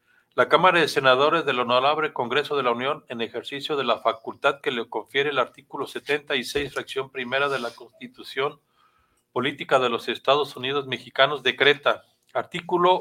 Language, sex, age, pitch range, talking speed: Spanish, male, 50-69, 125-150 Hz, 155 wpm